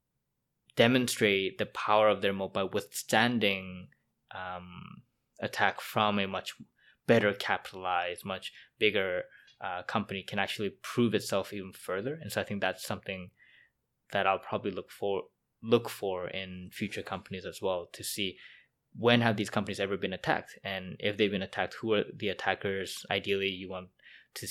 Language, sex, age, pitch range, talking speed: English, male, 20-39, 95-115 Hz, 155 wpm